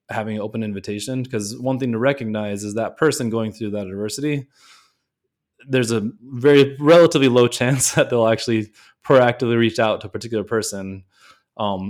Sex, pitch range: male, 105-125 Hz